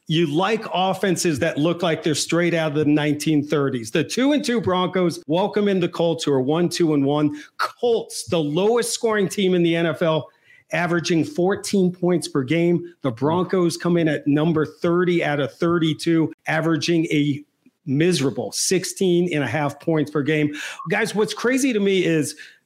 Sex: male